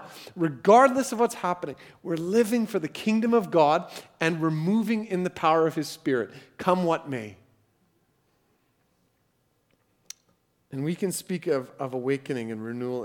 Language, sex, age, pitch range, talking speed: English, male, 40-59, 110-145 Hz, 145 wpm